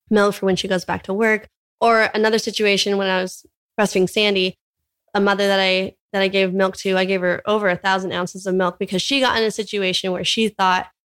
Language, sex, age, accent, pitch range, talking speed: English, female, 20-39, American, 185-210 Hz, 235 wpm